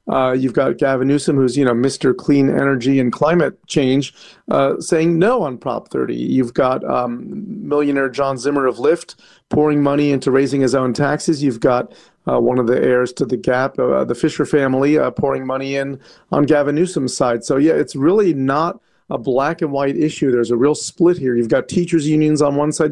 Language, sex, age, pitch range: English, male, 40-59, 135-160 Hz